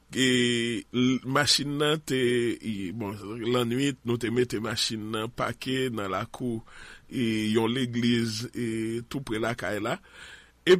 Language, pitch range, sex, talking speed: English, 115-135 Hz, male, 135 wpm